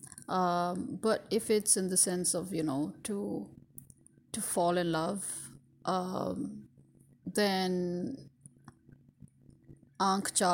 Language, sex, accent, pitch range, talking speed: English, female, Indian, 160-210 Hz, 100 wpm